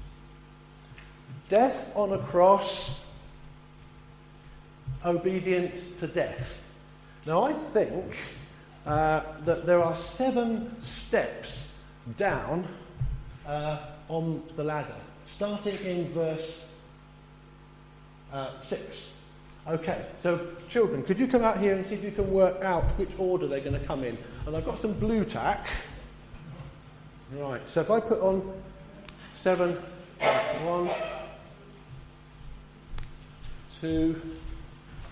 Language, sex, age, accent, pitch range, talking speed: English, male, 50-69, British, 145-185 Hz, 110 wpm